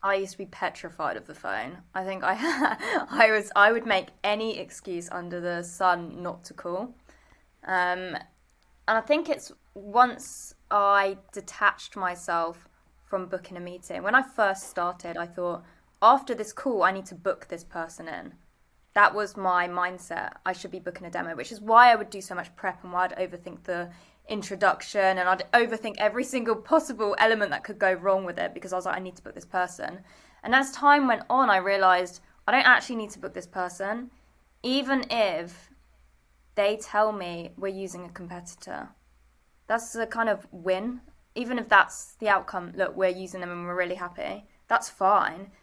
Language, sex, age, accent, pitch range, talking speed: English, female, 20-39, British, 180-220 Hz, 190 wpm